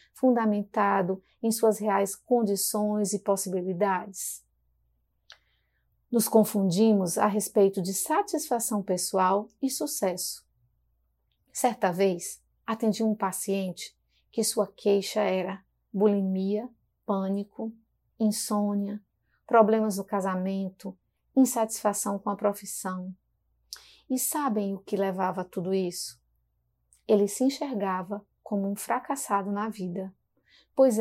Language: Portuguese